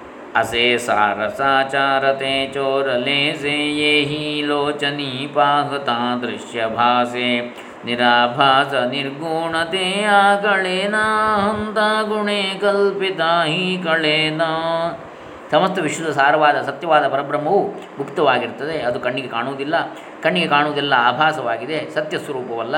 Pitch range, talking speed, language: 135-165 Hz, 65 wpm, Kannada